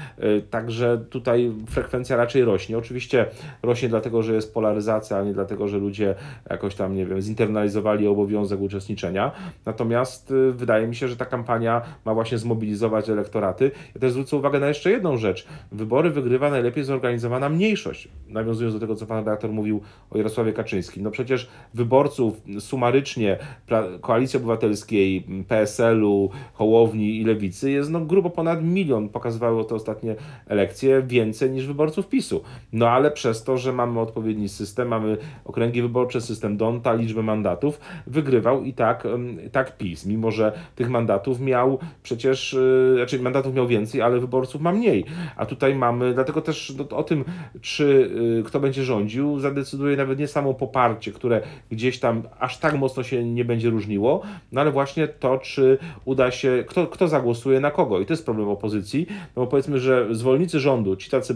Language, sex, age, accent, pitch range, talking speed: Polish, male, 40-59, native, 110-135 Hz, 165 wpm